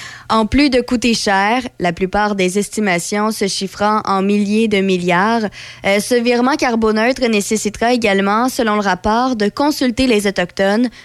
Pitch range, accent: 200-245 Hz, Canadian